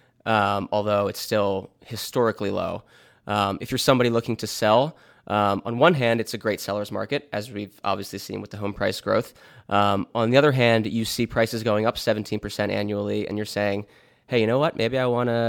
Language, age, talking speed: English, 20-39, 210 wpm